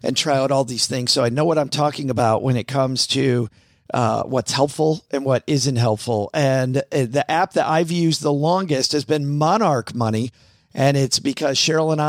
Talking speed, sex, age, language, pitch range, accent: 205 wpm, male, 50-69, English, 130-155 Hz, American